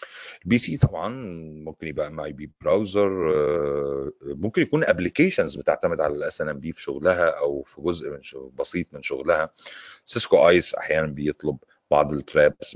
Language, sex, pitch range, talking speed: Arabic, male, 75-100 Hz, 140 wpm